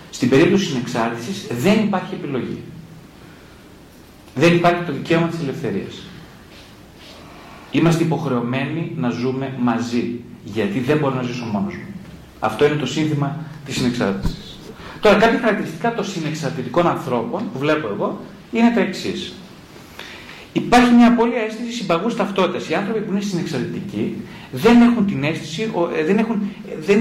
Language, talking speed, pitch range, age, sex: Greek, 135 wpm, 145-200 Hz, 40-59, male